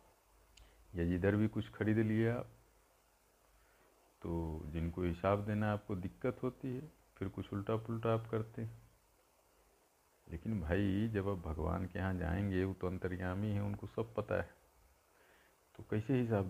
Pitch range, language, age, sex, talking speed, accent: 90-115 Hz, Hindi, 50-69, male, 150 wpm, native